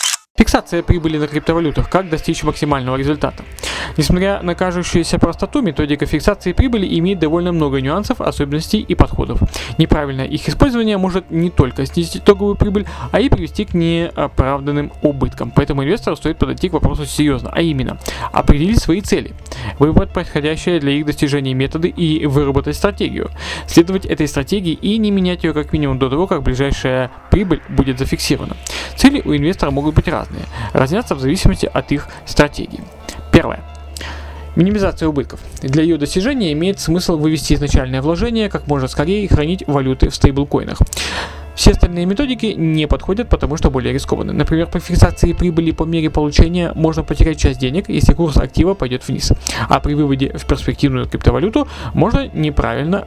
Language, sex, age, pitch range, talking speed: Russian, male, 20-39, 135-170 Hz, 155 wpm